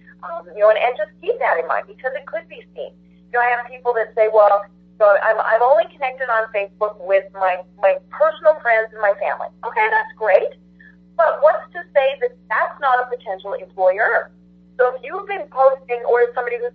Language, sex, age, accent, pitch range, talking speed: English, female, 40-59, American, 200-290 Hz, 220 wpm